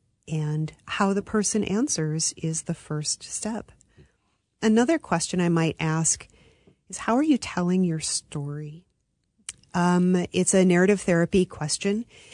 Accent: American